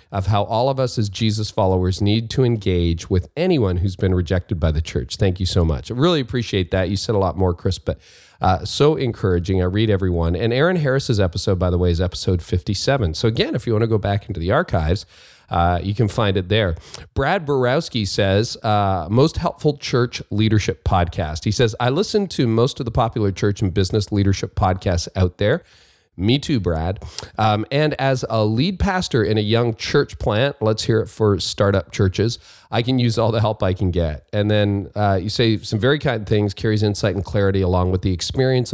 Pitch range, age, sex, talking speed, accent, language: 95-125 Hz, 40-59, male, 215 wpm, American, English